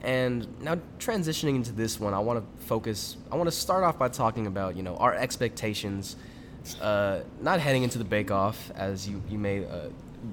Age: 10-29